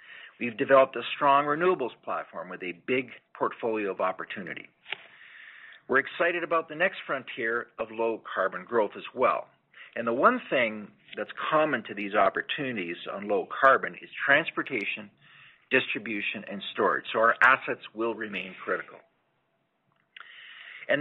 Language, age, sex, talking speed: English, 50-69, male, 135 wpm